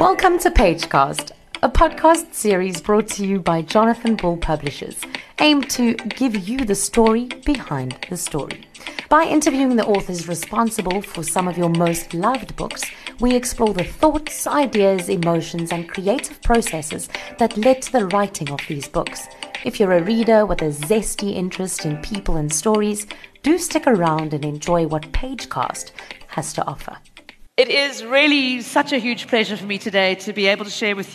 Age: 30-49